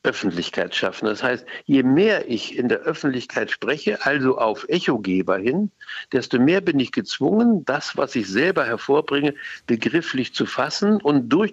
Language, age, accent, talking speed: German, 60-79, German, 155 wpm